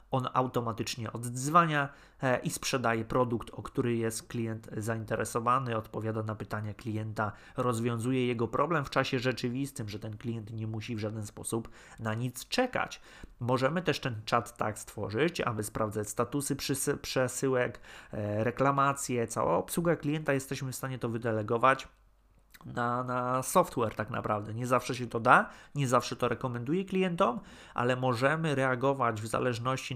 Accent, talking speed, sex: native, 140 wpm, male